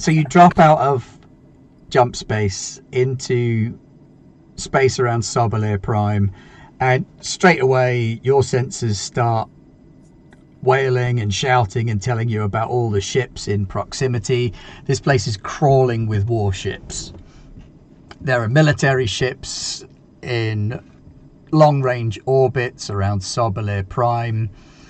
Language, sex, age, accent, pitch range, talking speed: English, male, 40-59, British, 105-130 Hz, 110 wpm